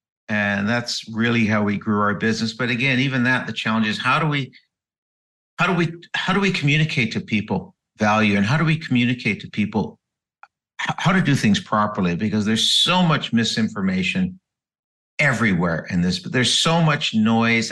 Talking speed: 180 wpm